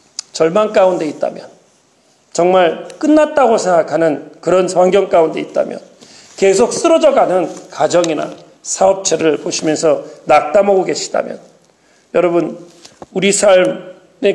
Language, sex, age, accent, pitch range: Korean, male, 40-59, native, 175-270 Hz